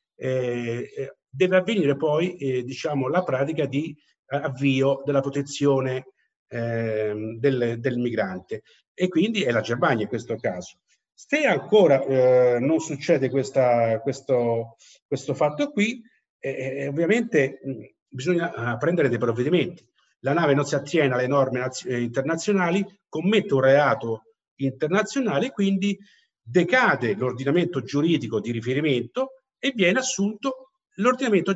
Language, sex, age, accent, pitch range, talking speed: Italian, male, 50-69, native, 130-190 Hz, 115 wpm